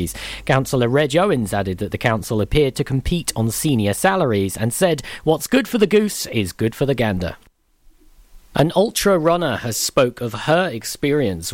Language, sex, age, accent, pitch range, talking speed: English, male, 40-59, British, 110-160 Hz, 170 wpm